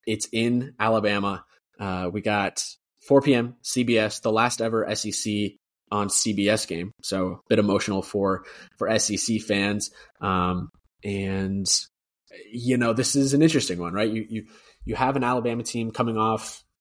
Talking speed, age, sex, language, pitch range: 155 wpm, 20-39, male, English, 100-115 Hz